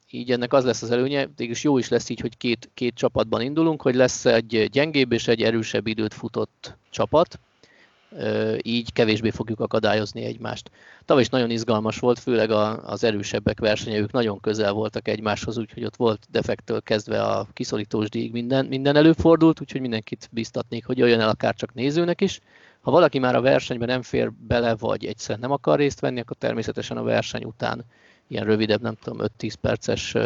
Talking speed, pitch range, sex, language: 175 wpm, 110-135 Hz, male, Hungarian